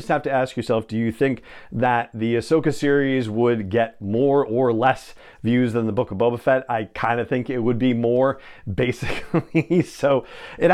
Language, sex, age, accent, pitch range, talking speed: English, male, 40-59, American, 115-155 Hz, 190 wpm